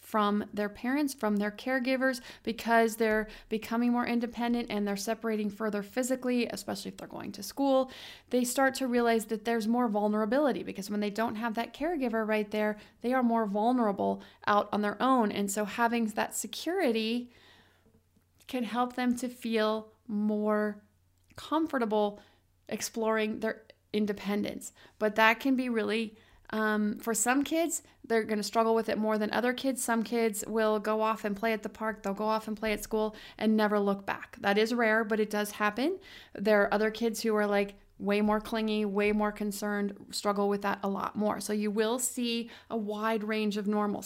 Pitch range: 210-240 Hz